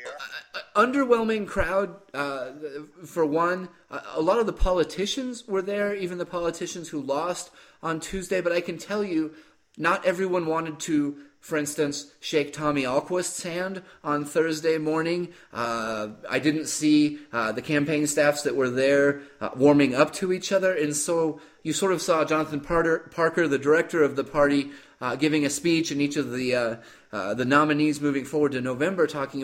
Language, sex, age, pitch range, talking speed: English, male, 30-49, 120-165 Hz, 175 wpm